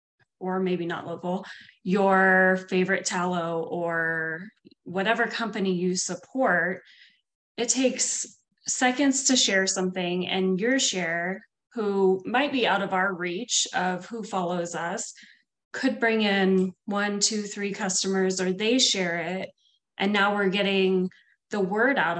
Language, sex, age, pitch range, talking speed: English, female, 20-39, 175-205 Hz, 135 wpm